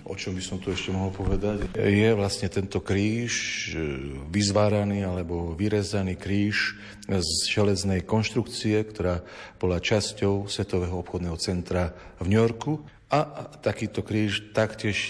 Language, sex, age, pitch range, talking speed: Slovak, male, 40-59, 90-105 Hz, 125 wpm